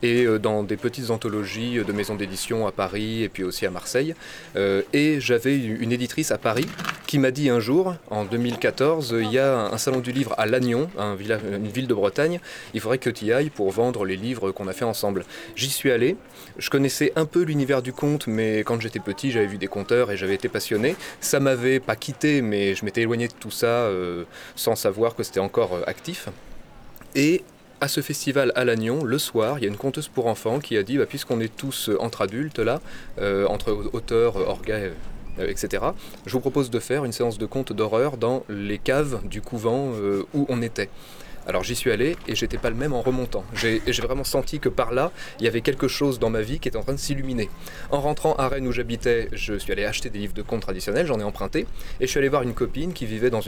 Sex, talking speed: male, 230 wpm